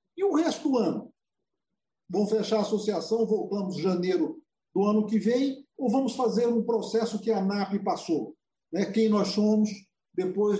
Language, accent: Portuguese, Brazilian